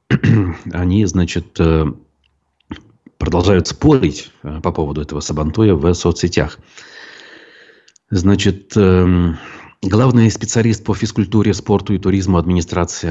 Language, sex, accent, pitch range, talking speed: Russian, male, native, 80-95 Hz, 85 wpm